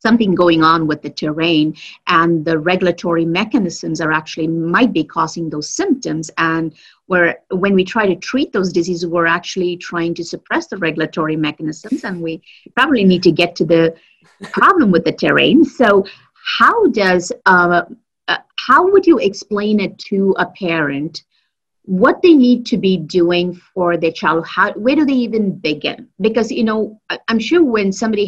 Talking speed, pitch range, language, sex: 170 wpm, 165-210 Hz, English, female